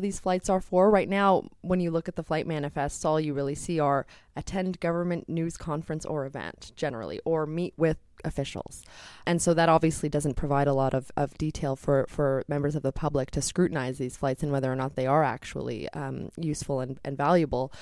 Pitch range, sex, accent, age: 145-180 Hz, female, American, 20-39